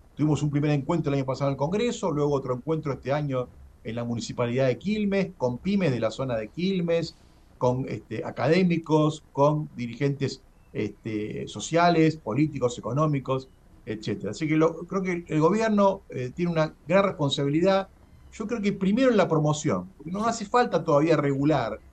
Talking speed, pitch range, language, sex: 170 wpm, 125-180 Hz, Spanish, male